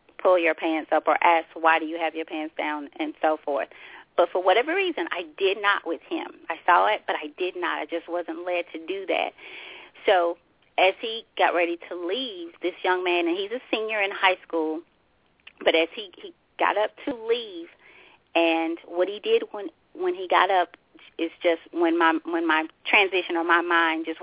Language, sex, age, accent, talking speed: English, female, 30-49, American, 210 wpm